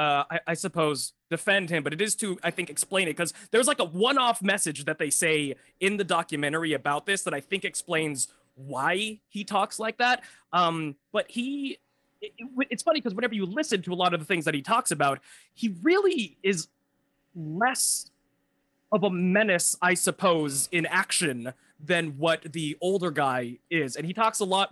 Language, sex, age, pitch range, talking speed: English, male, 20-39, 155-205 Hz, 190 wpm